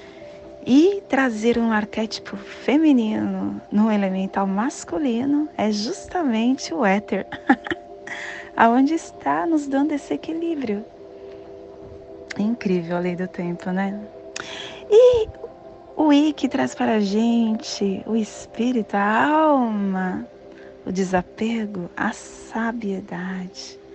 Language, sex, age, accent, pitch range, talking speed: Portuguese, female, 20-39, Brazilian, 205-275 Hz, 105 wpm